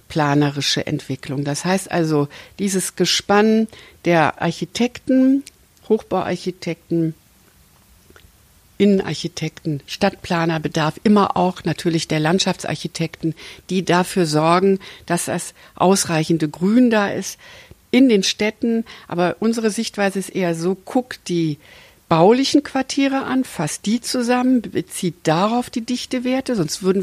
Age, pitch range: 60-79, 165-225 Hz